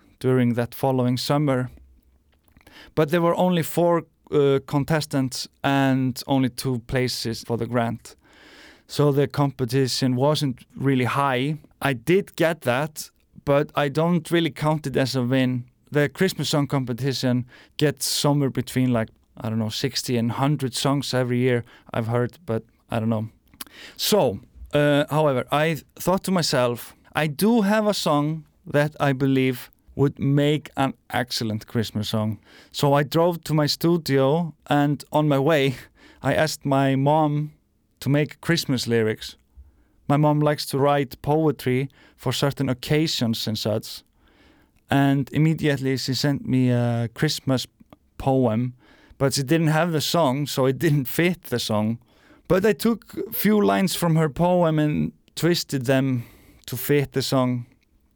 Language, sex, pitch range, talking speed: English, male, 120-150 Hz, 150 wpm